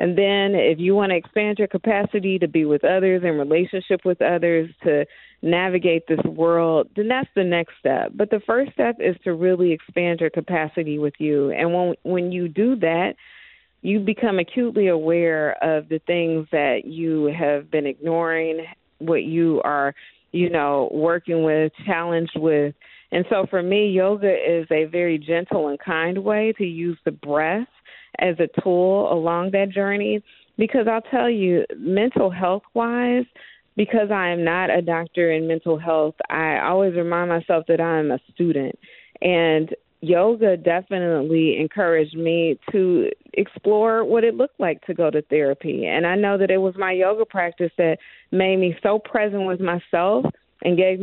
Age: 40-59